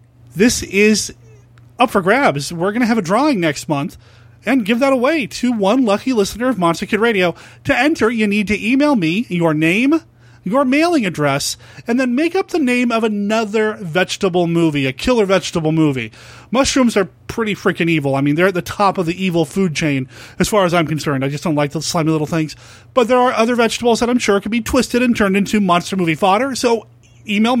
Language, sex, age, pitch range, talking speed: English, male, 30-49, 155-230 Hz, 215 wpm